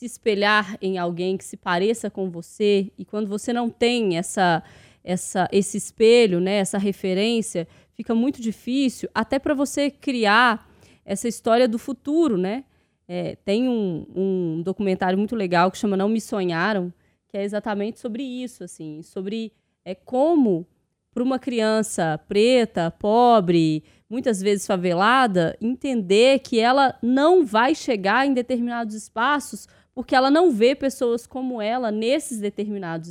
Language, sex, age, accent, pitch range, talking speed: Portuguese, female, 20-39, Brazilian, 195-255 Hz, 145 wpm